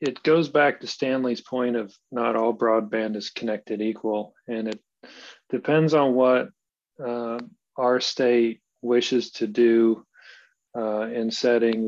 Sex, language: male, English